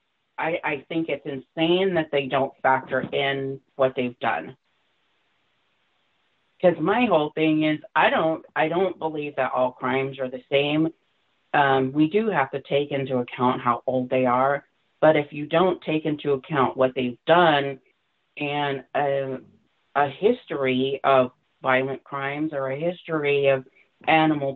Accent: American